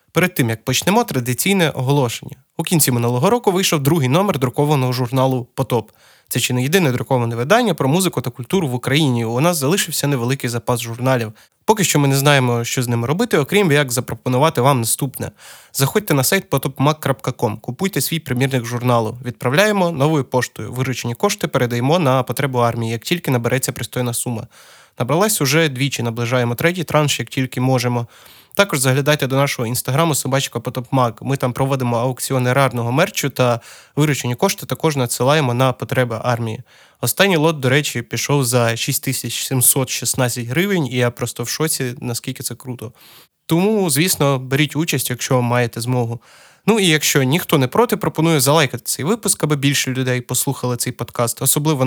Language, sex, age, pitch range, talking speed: Ukrainian, male, 20-39, 125-155 Hz, 160 wpm